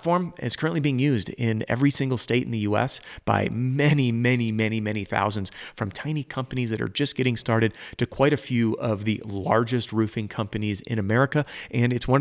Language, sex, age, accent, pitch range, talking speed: English, male, 30-49, American, 110-130 Hz, 190 wpm